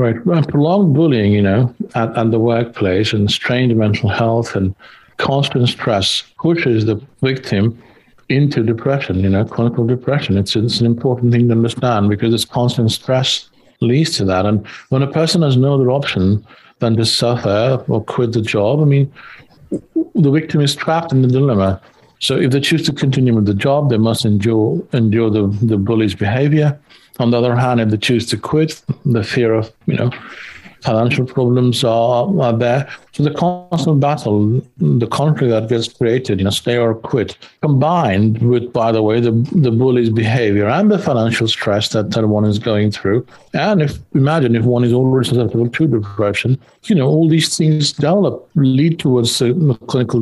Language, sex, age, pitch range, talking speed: English, male, 60-79, 115-140 Hz, 180 wpm